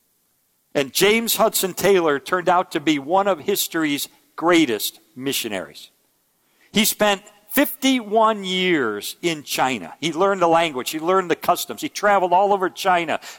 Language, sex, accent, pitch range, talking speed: English, male, American, 160-215 Hz, 145 wpm